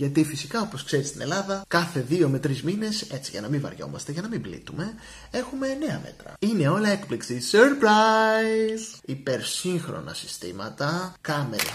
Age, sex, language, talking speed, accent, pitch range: 20-39, male, Greek, 155 wpm, native, 130-180 Hz